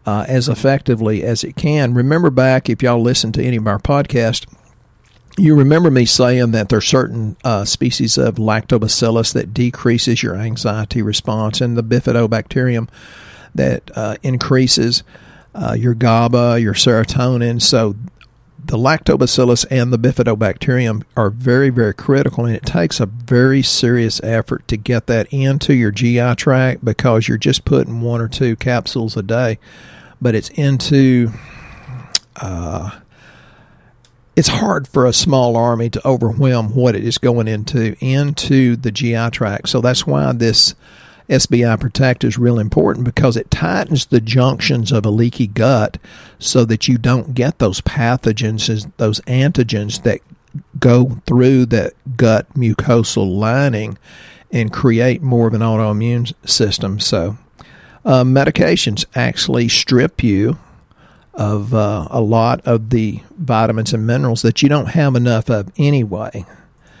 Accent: American